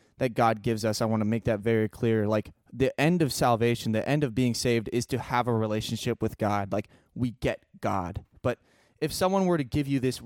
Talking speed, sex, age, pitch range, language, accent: 235 wpm, male, 20-39, 110-130 Hz, English, American